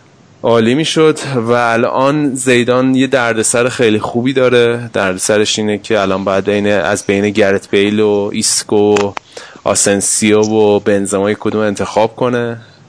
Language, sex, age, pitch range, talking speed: Persian, male, 20-39, 100-115 Hz, 140 wpm